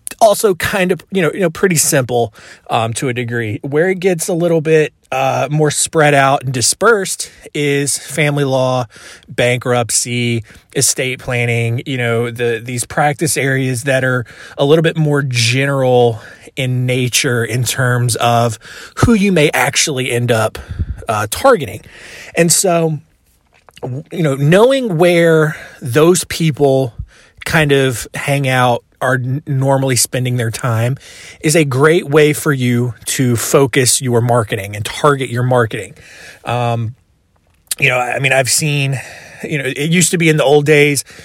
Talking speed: 155 wpm